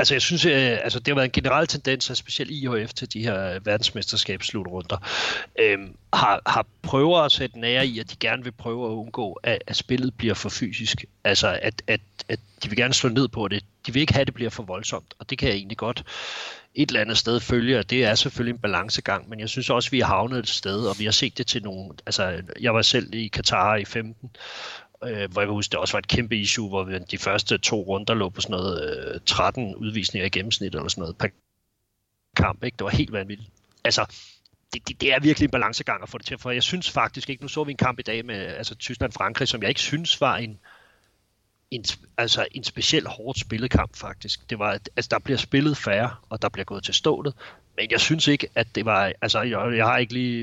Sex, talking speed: male, 235 wpm